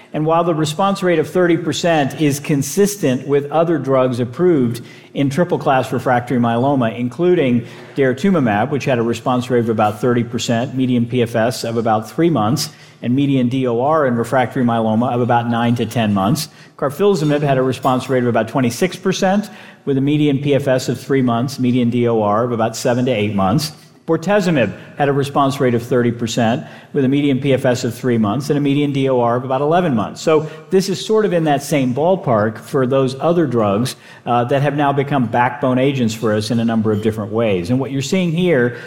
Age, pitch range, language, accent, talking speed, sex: 50-69, 120-155 Hz, English, American, 190 wpm, male